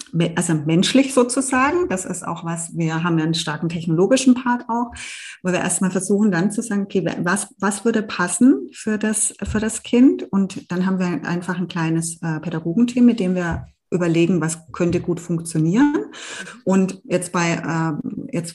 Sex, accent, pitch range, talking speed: female, German, 175-215 Hz, 175 wpm